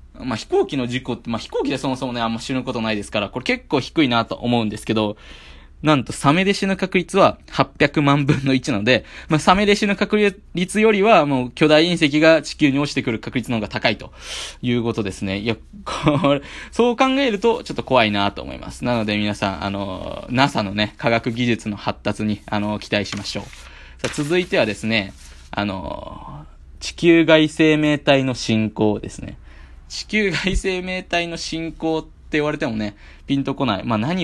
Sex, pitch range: male, 105-160 Hz